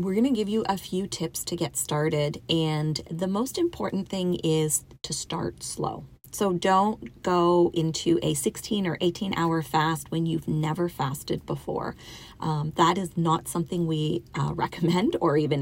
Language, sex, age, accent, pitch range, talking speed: English, female, 30-49, American, 160-190 Hz, 175 wpm